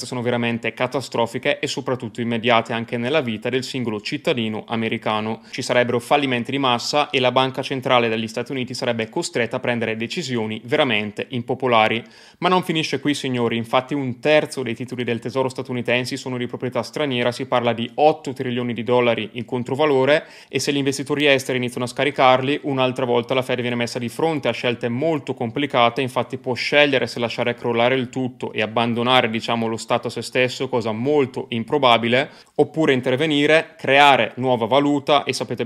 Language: Italian